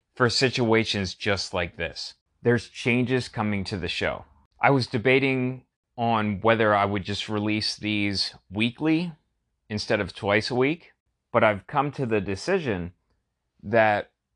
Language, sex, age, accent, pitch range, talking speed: English, male, 30-49, American, 95-120 Hz, 140 wpm